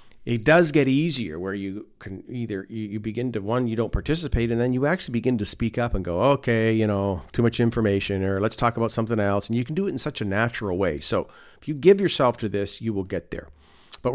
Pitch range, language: 100-130 Hz, English